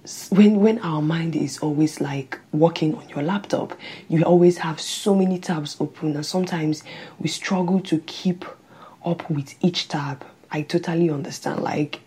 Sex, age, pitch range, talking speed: female, 20-39, 155-190 Hz, 160 wpm